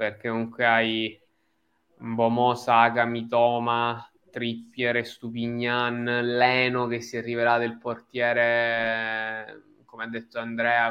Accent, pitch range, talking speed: native, 115-130 Hz, 105 wpm